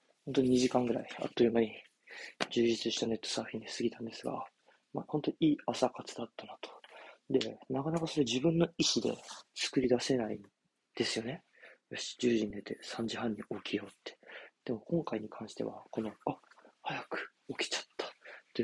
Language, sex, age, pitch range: Japanese, male, 20-39, 115-165 Hz